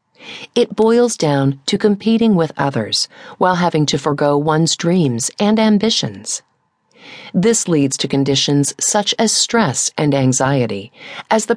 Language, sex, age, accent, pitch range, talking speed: English, female, 40-59, American, 140-220 Hz, 135 wpm